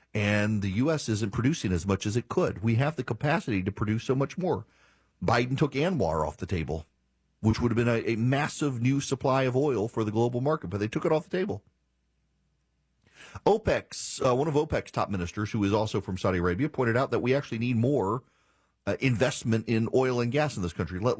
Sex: male